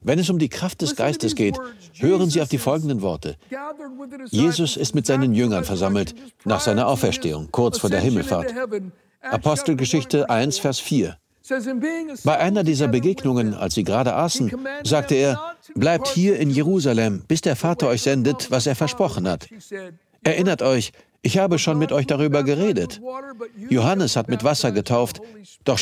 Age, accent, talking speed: 60-79, German, 160 wpm